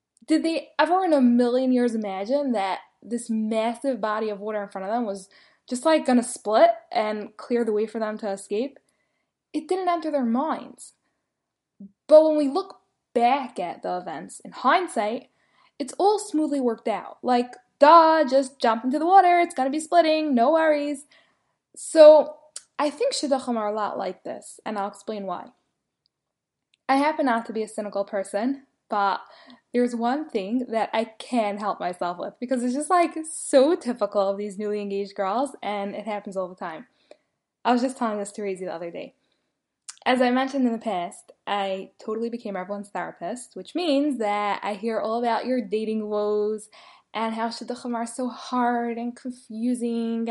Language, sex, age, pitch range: English, female, 10-29, 210-285 Hz